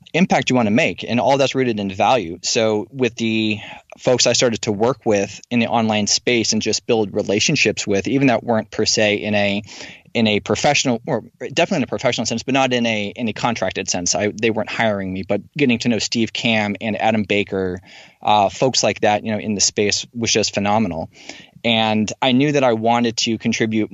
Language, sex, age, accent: English, male, 20-39, American